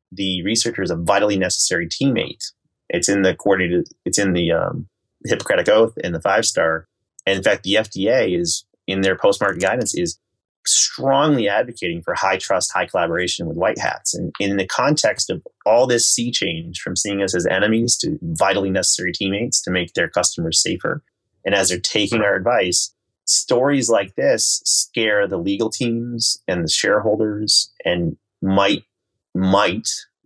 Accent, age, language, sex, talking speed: American, 30-49, English, male, 170 wpm